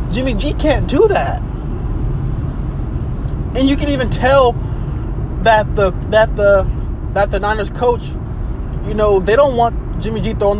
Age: 20-39